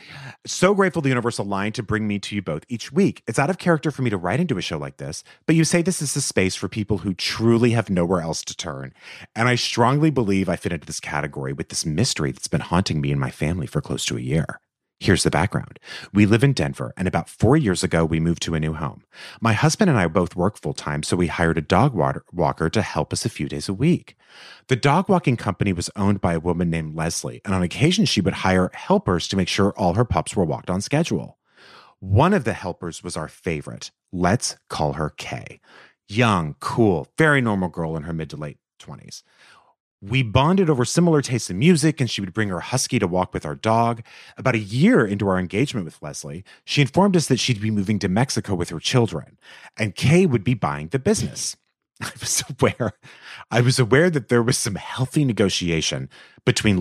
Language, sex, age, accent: English, male, 30-49, American